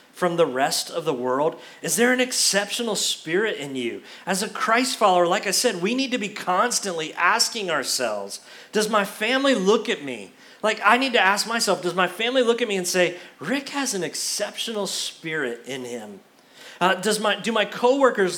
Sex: male